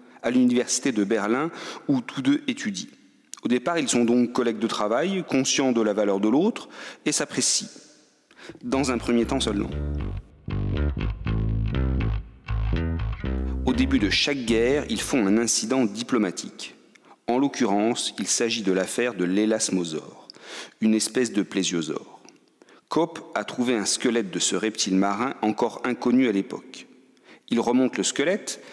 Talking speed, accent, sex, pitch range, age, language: 140 wpm, French, male, 100-125 Hz, 40-59, French